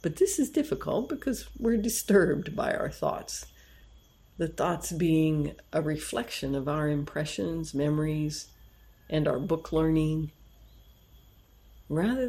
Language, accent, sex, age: Japanese, American, female, 60-79